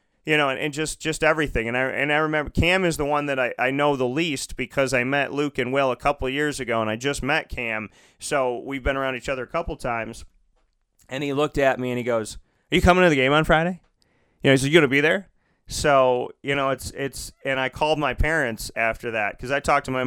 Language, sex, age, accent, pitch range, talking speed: English, male, 30-49, American, 115-140 Hz, 270 wpm